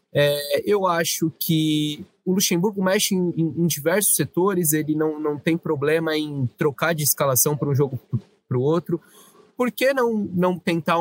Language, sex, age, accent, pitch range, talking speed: Portuguese, male, 20-39, Brazilian, 130-170 Hz, 175 wpm